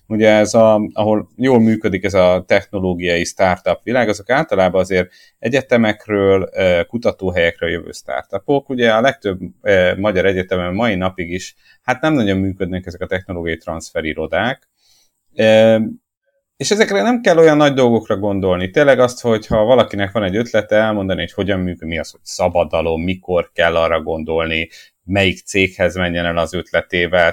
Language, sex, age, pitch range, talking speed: Hungarian, male, 30-49, 95-130 Hz, 145 wpm